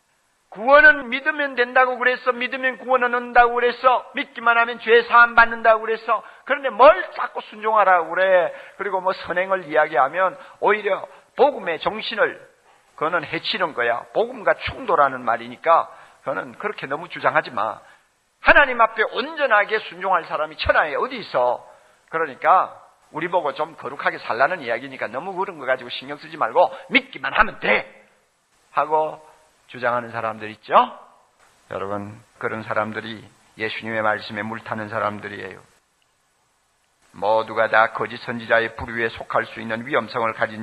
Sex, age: male, 50-69